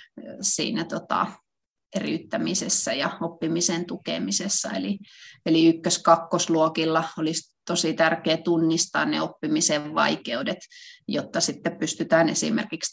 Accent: native